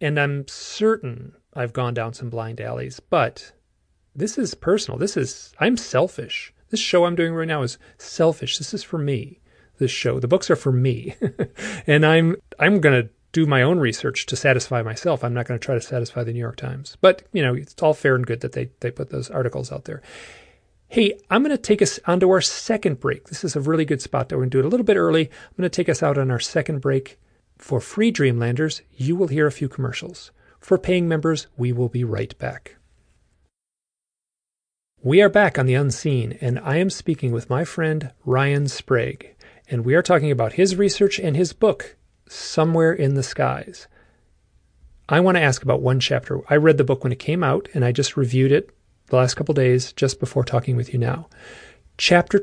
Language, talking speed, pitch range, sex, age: English, 215 wpm, 125-170 Hz, male, 40-59